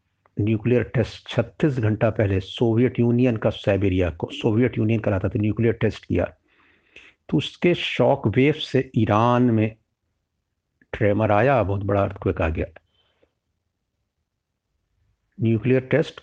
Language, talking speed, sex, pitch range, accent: Hindi, 120 wpm, male, 100-130 Hz, native